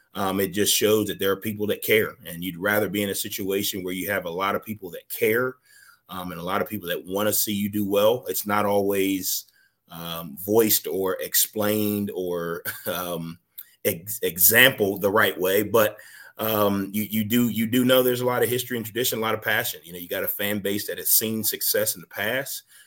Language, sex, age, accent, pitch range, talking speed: English, male, 30-49, American, 95-115 Hz, 225 wpm